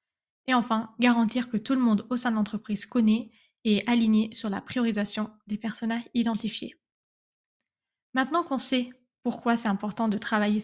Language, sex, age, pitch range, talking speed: French, female, 10-29, 215-255 Hz, 165 wpm